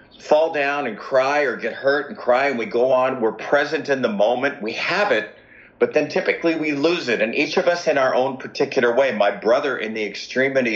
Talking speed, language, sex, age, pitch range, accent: 230 wpm, English, male, 50-69, 105-140 Hz, American